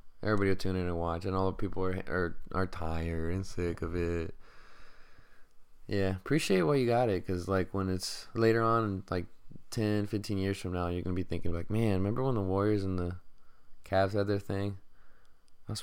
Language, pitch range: English, 90-105 Hz